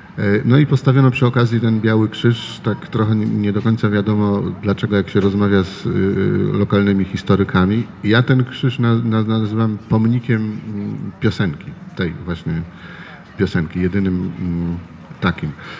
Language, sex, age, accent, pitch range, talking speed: Polish, male, 40-59, native, 100-115 Hz, 120 wpm